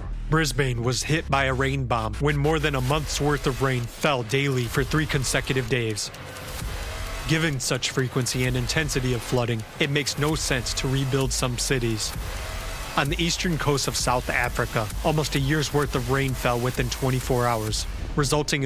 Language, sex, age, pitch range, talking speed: English, male, 30-49, 120-145 Hz, 175 wpm